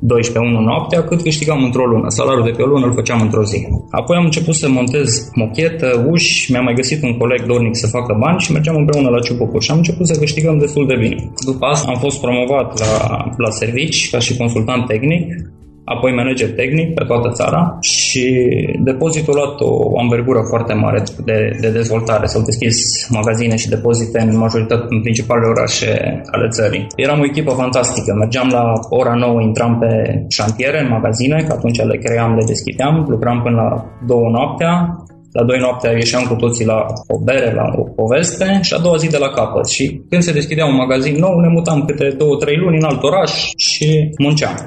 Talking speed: 195 wpm